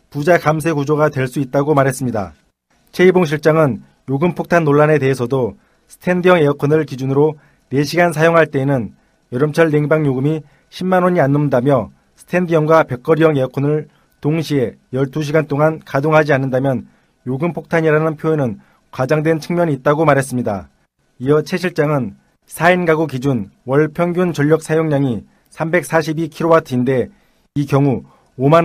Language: Korean